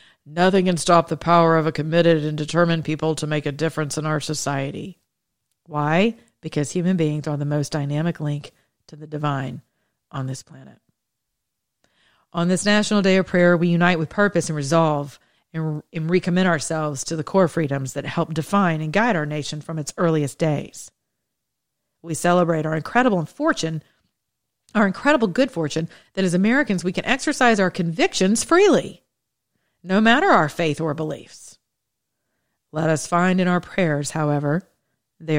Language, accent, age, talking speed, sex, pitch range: English, American, 40-59, 165 wpm, female, 150-185 Hz